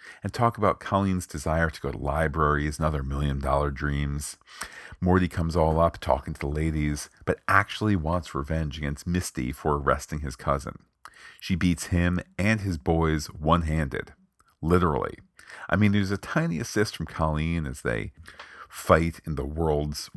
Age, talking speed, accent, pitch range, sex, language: 40-59, 160 wpm, American, 75-90 Hz, male, English